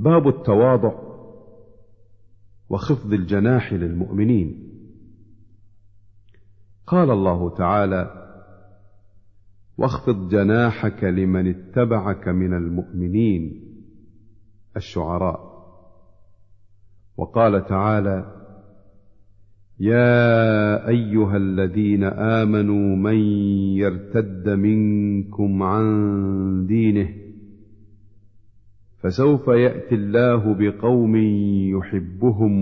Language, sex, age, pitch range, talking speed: Arabic, male, 50-69, 100-110 Hz, 55 wpm